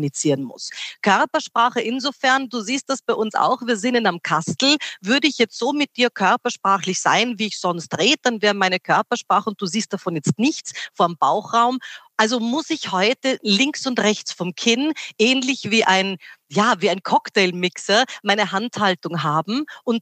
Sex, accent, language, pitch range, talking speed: female, German, German, 190-245 Hz, 175 wpm